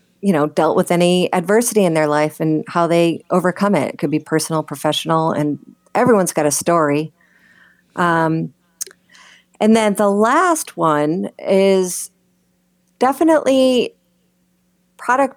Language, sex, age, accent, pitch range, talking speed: English, female, 40-59, American, 165-200 Hz, 130 wpm